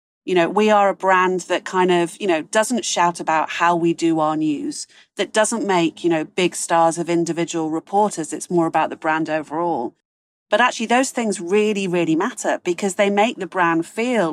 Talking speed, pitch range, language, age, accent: 200 wpm, 165-210 Hz, English, 40-59, British